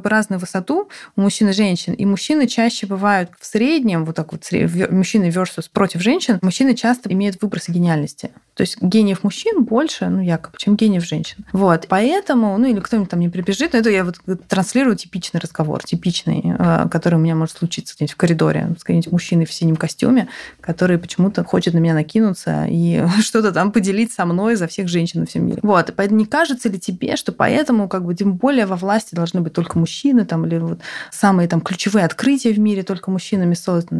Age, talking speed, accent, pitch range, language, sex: 20-39, 200 wpm, native, 175-230 Hz, Russian, female